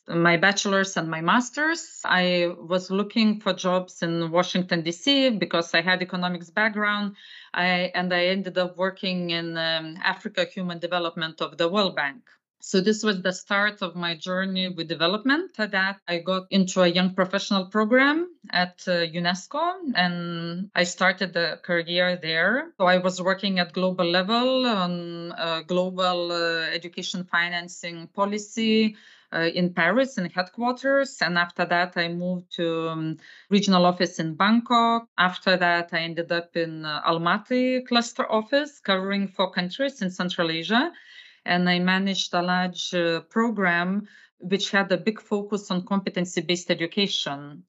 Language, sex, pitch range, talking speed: English, female, 175-205 Hz, 150 wpm